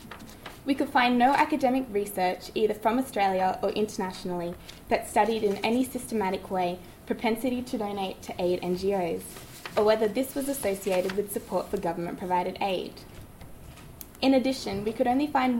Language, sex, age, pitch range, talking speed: English, female, 20-39, 195-240 Hz, 150 wpm